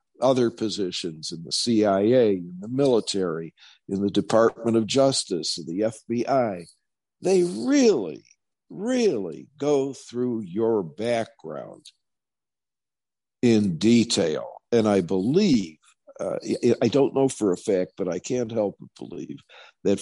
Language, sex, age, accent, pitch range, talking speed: English, male, 50-69, American, 95-120 Hz, 115 wpm